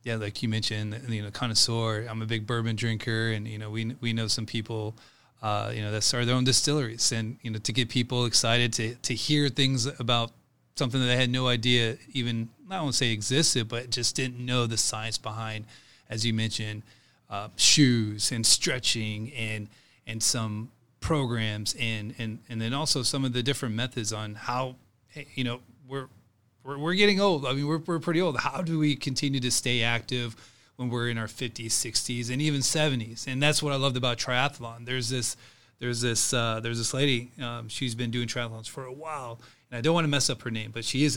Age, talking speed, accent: 30-49, 210 wpm, American